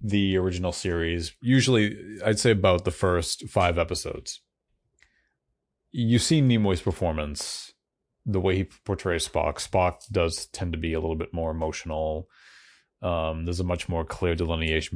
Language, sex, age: English, male, 30-49